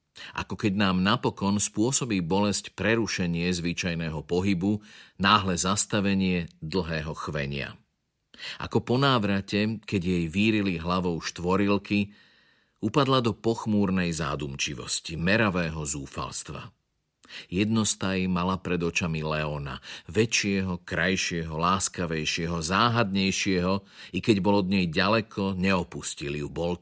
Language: Slovak